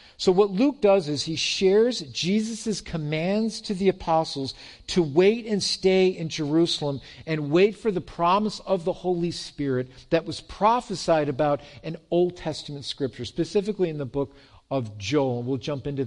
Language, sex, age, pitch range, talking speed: English, male, 50-69, 135-180 Hz, 165 wpm